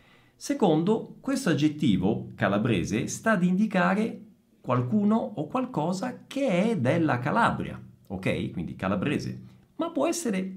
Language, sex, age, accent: Italian, male, 40-59, native